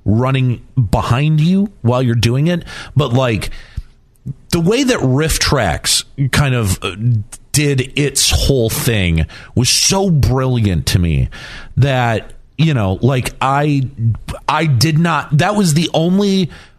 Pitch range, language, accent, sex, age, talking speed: 110-155 Hz, English, American, male, 40-59, 130 wpm